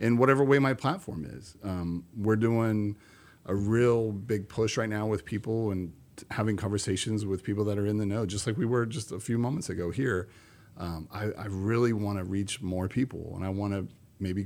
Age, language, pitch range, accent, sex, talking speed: 40-59, English, 95-115 Hz, American, male, 215 wpm